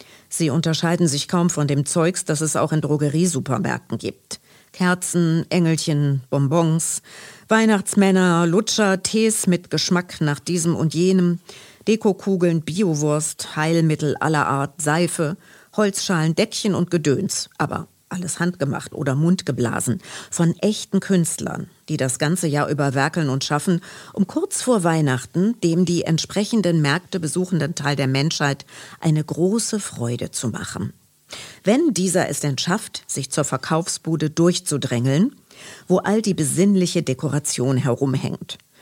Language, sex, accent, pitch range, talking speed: German, female, German, 145-185 Hz, 130 wpm